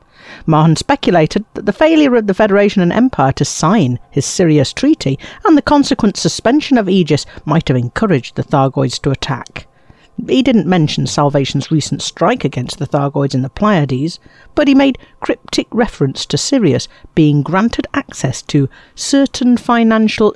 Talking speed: 155 wpm